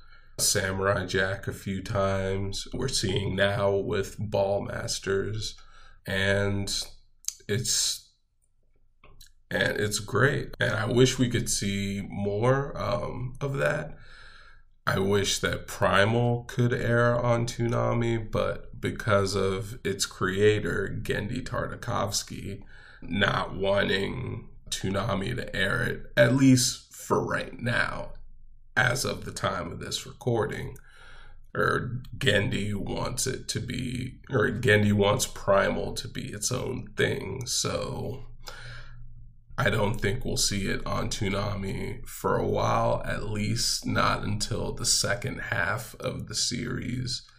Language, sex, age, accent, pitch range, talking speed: English, male, 20-39, American, 100-125 Hz, 120 wpm